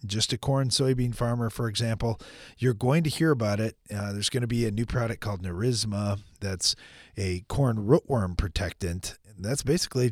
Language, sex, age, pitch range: English, male, 40-59, 95-130 Hz